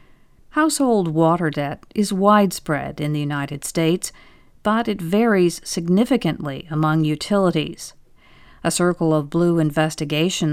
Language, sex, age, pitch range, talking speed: English, female, 50-69, 155-205 Hz, 115 wpm